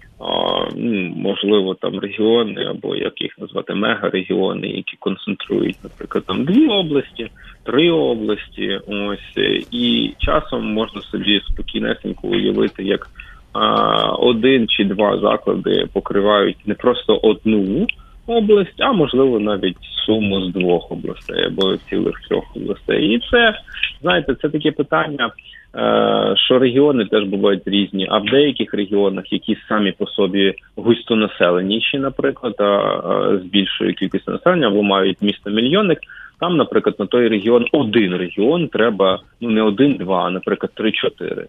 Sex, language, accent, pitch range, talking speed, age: male, Ukrainian, native, 100-145 Hz, 125 wpm, 20-39